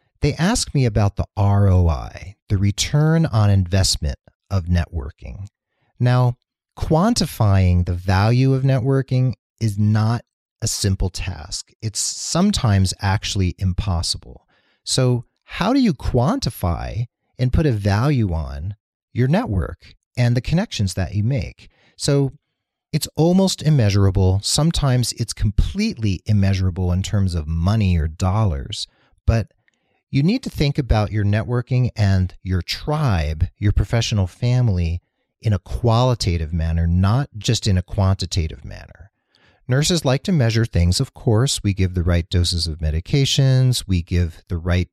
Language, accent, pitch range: English, American, 90-125 Hz